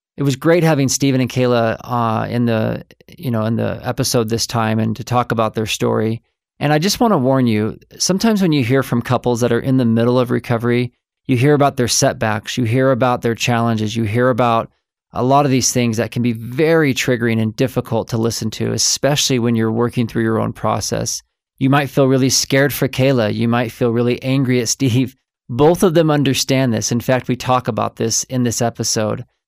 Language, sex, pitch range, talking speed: English, male, 115-135 Hz, 220 wpm